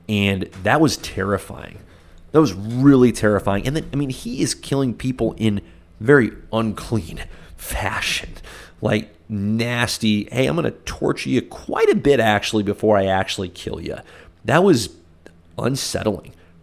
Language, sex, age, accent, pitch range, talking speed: English, male, 30-49, American, 90-115 Hz, 145 wpm